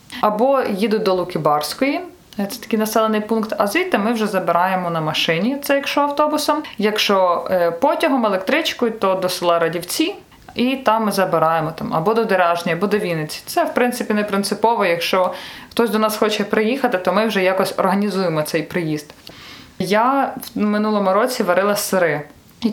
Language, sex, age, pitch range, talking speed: Ukrainian, female, 20-39, 190-245 Hz, 160 wpm